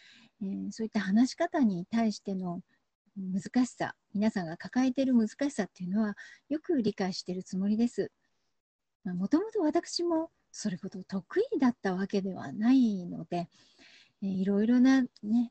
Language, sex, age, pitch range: Japanese, female, 40-59, 205-295 Hz